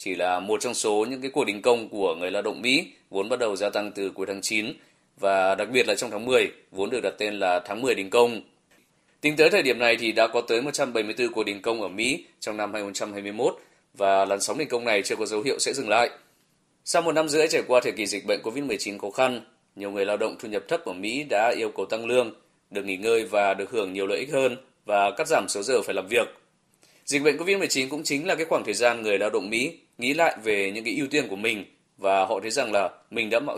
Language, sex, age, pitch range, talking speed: Vietnamese, male, 20-39, 100-145 Hz, 285 wpm